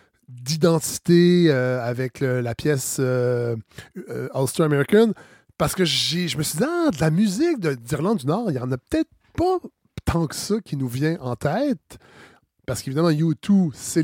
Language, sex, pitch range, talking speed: French, male, 140-190 Hz, 185 wpm